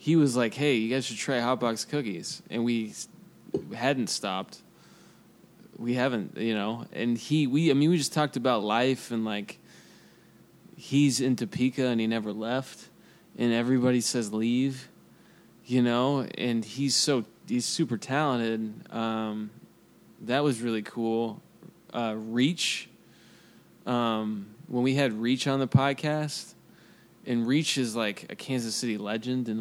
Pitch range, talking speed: 110-135 Hz, 150 wpm